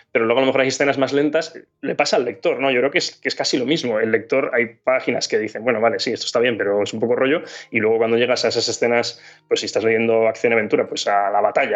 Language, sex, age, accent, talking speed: Spanish, male, 20-39, Spanish, 285 wpm